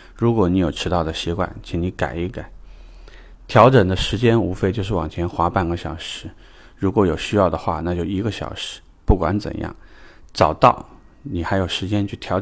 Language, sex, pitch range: Chinese, male, 85-100 Hz